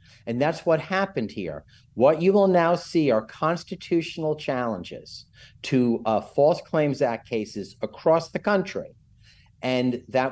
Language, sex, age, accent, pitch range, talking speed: English, male, 50-69, American, 125-165 Hz, 140 wpm